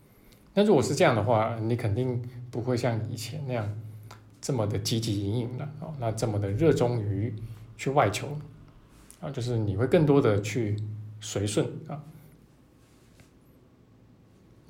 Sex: male